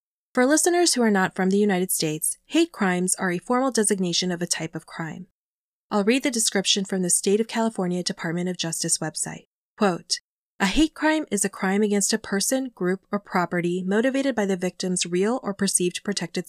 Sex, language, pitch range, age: female, English, 180-220 Hz, 20-39